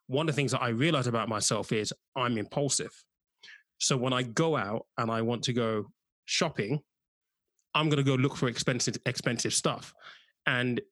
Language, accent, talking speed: English, British, 180 wpm